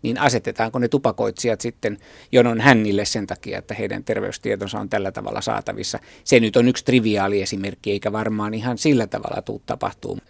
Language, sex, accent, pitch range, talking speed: Finnish, male, native, 110-125 Hz, 165 wpm